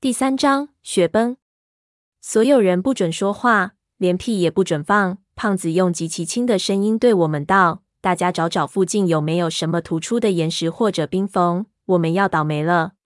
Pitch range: 175-210 Hz